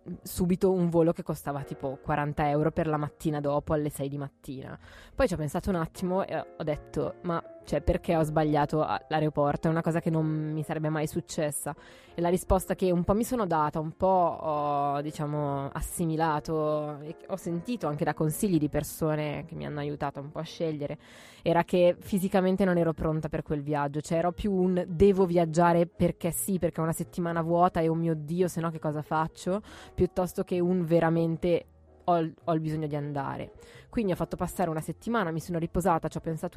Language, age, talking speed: Italian, 20-39, 200 wpm